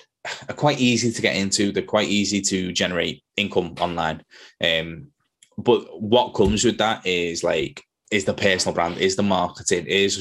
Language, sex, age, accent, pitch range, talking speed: English, male, 20-39, British, 90-110 Hz, 170 wpm